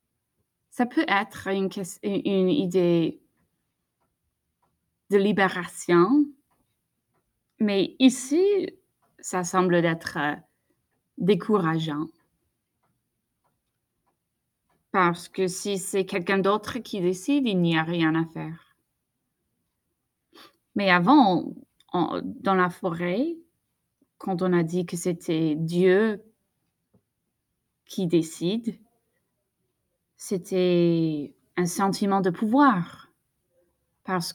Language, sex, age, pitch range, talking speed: French, female, 20-39, 170-195 Hz, 90 wpm